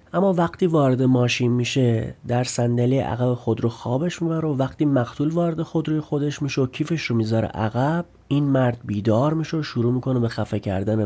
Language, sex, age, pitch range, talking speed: Persian, male, 30-49, 110-145 Hz, 180 wpm